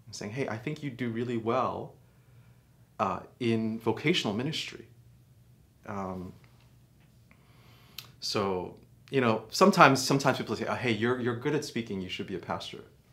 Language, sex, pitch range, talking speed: English, male, 115-130 Hz, 150 wpm